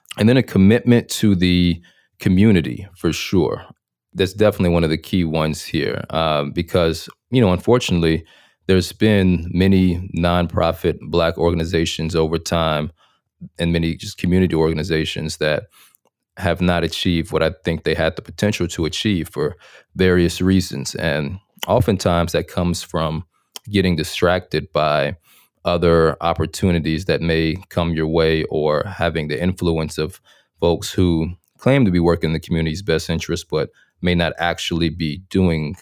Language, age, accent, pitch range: English, 30-49, American, 80-95 Hz